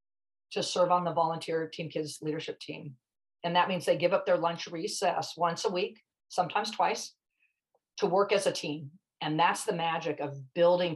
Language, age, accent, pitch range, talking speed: English, 40-59, American, 150-180 Hz, 185 wpm